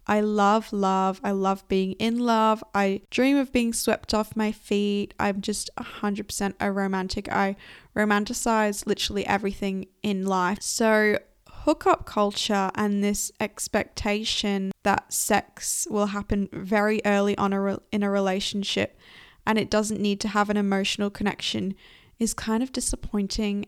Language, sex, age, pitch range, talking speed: English, female, 10-29, 195-220 Hz, 140 wpm